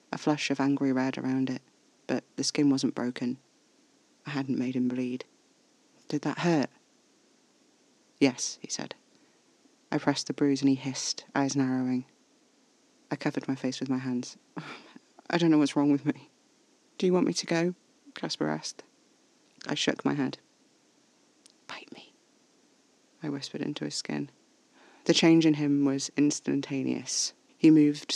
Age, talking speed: 30-49, 155 wpm